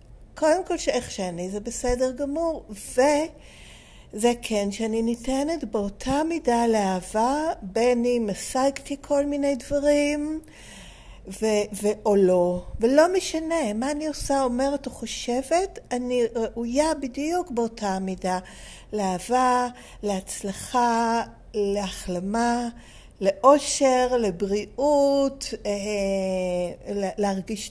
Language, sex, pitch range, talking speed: Hebrew, female, 205-265 Hz, 90 wpm